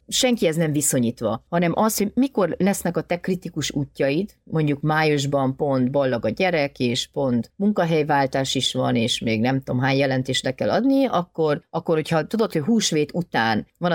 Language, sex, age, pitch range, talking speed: Hungarian, female, 40-59, 130-170 Hz, 170 wpm